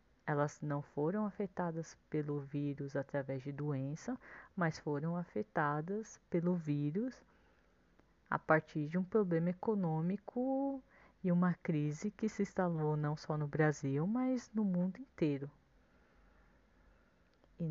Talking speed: 120 wpm